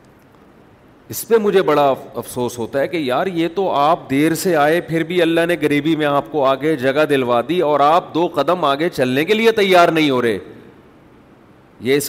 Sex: male